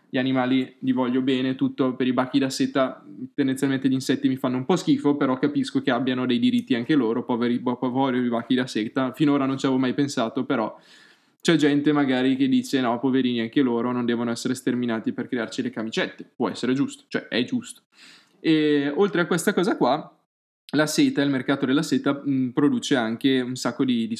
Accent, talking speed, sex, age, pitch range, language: native, 210 wpm, male, 10-29, 125-145 Hz, Italian